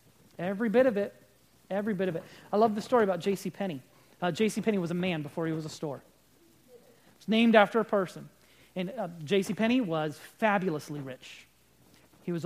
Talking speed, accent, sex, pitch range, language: 195 wpm, American, male, 160-215 Hz, English